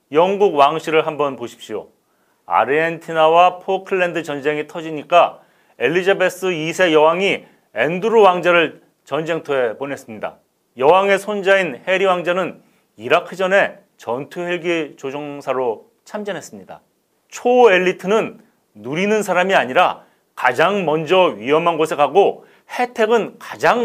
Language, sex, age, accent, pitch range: Korean, male, 40-59, native, 145-190 Hz